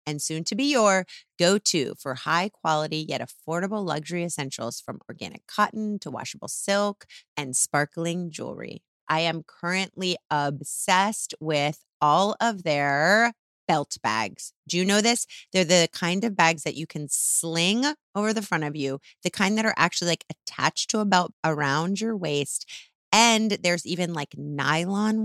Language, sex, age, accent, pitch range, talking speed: English, female, 30-49, American, 150-195 Hz, 160 wpm